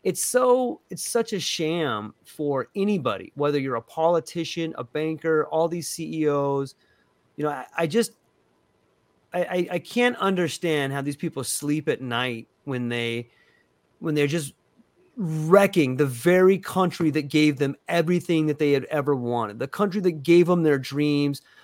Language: English